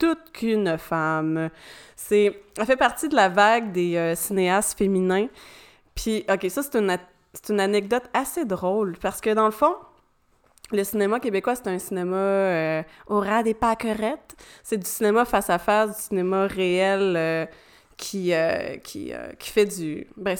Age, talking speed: 20-39, 170 wpm